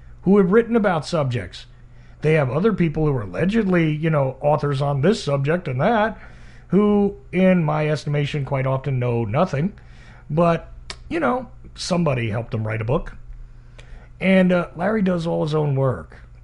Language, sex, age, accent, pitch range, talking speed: English, male, 40-59, American, 130-170 Hz, 165 wpm